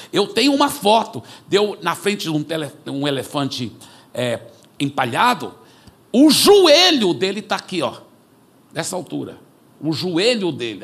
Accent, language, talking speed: Brazilian, Portuguese, 140 wpm